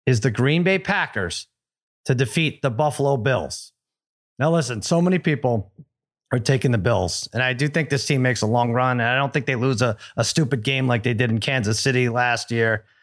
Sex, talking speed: male, 215 wpm